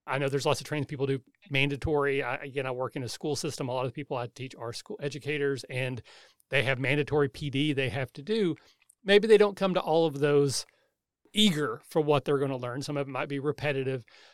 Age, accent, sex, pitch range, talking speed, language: 30-49, American, male, 135-160 Hz, 230 wpm, English